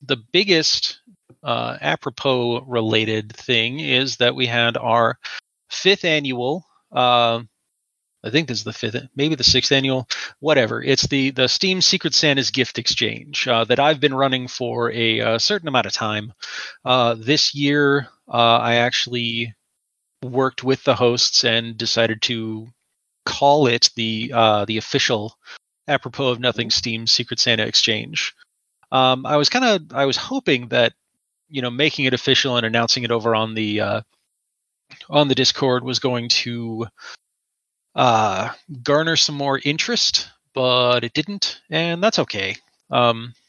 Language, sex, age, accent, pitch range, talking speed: English, male, 30-49, American, 115-140 Hz, 150 wpm